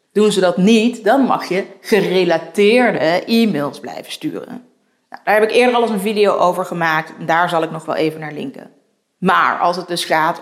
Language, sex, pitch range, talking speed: Dutch, female, 180-235 Hz, 200 wpm